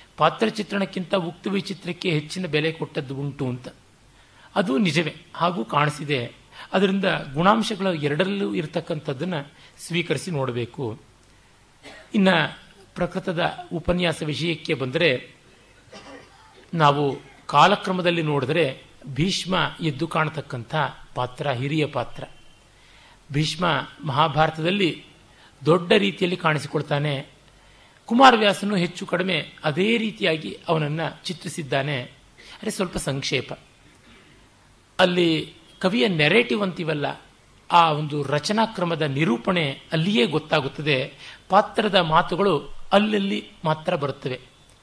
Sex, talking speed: male, 85 wpm